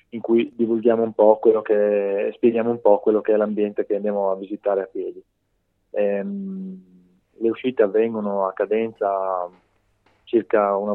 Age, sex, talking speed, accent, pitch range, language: 20-39, male, 155 wpm, native, 100-110 Hz, Italian